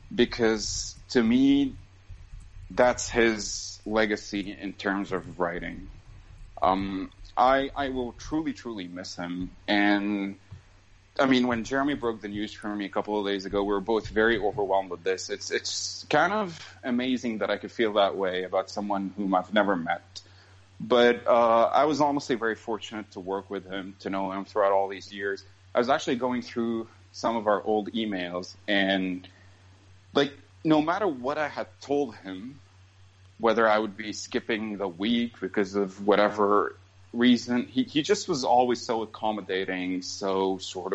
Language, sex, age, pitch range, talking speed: English, male, 30-49, 95-115 Hz, 165 wpm